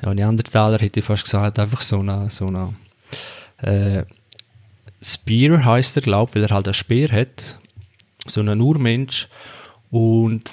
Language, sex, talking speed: German, male, 165 wpm